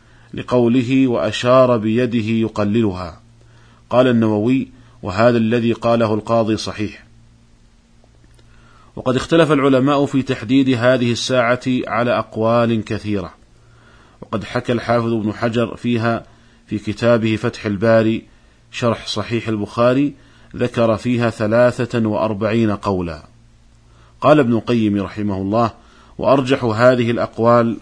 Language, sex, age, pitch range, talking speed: Arabic, male, 40-59, 110-125 Hz, 100 wpm